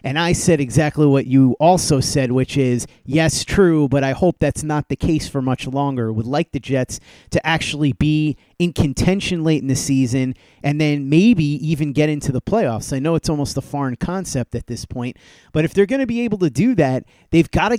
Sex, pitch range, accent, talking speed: male, 130-170 Hz, American, 225 wpm